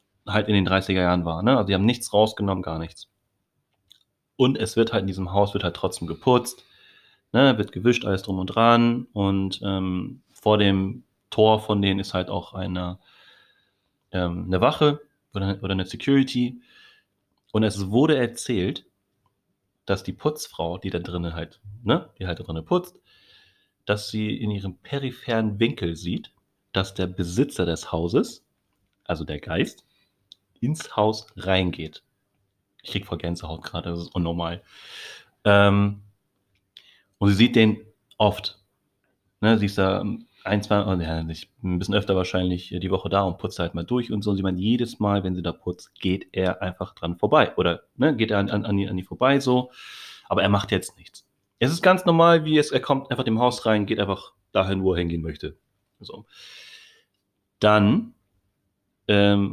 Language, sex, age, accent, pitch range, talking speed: German, male, 30-49, German, 95-115 Hz, 170 wpm